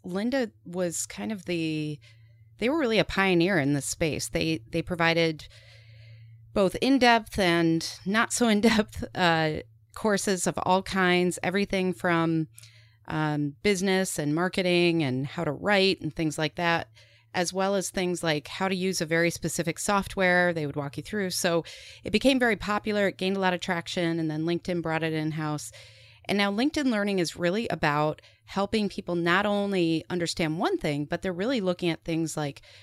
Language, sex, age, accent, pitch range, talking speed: English, female, 30-49, American, 155-190 Hz, 175 wpm